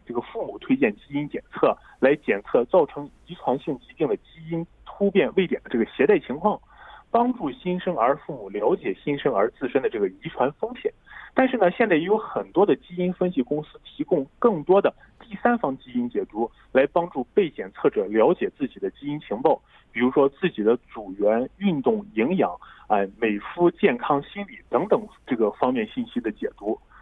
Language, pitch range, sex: Korean, 165-255 Hz, male